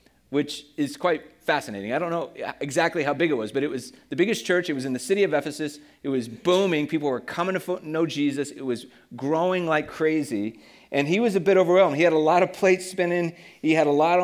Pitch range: 145-185 Hz